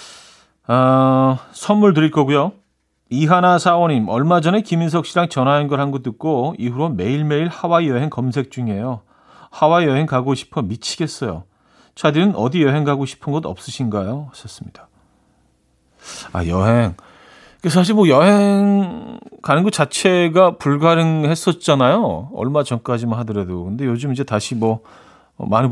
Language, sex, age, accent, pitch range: Korean, male, 40-59, native, 110-165 Hz